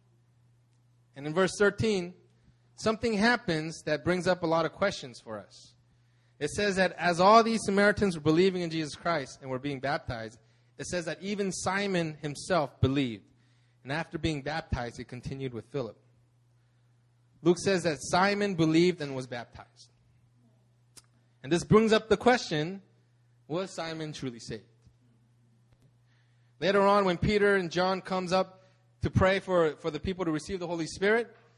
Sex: male